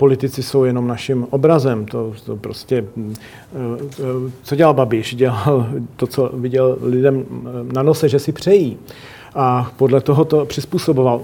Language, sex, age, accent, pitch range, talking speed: Czech, male, 40-59, native, 125-140 Hz, 140 wpm